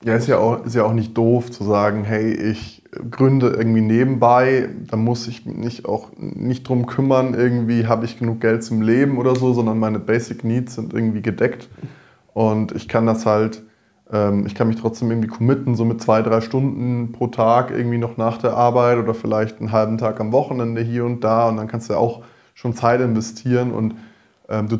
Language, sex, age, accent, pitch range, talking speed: English, male, 20-39, German, 110-125 Hz, 205 wpm